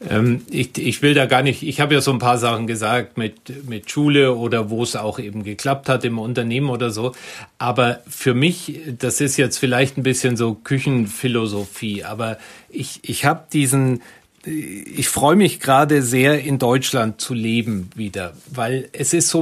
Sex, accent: male, German